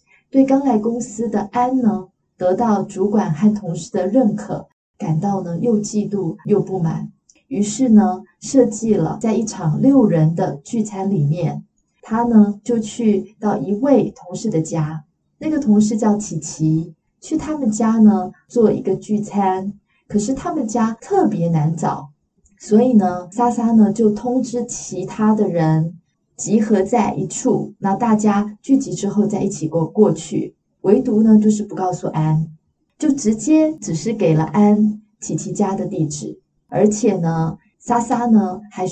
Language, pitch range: Chinese, 185-235 Hz